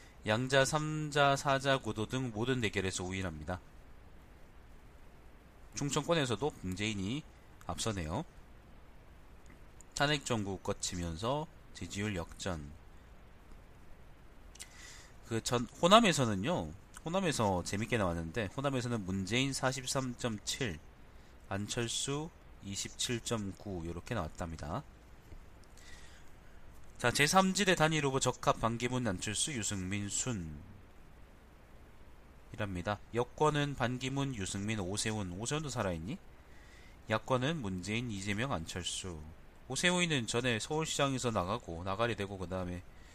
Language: Korean